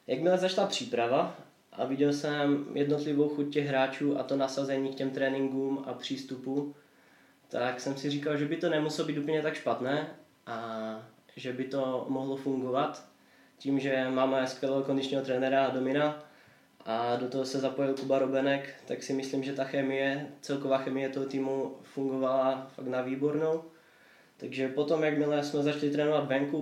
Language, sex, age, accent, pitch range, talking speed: Czech, male, 20-39, native, 135-150 Hz, 160 wpm